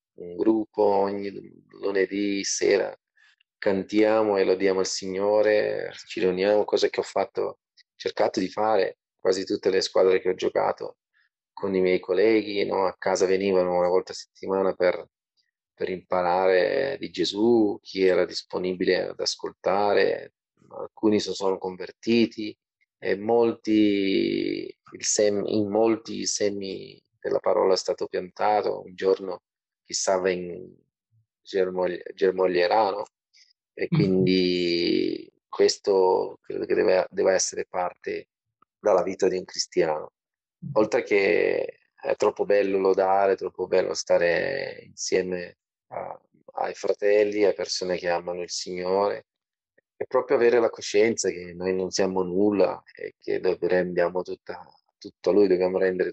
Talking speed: 130 wpm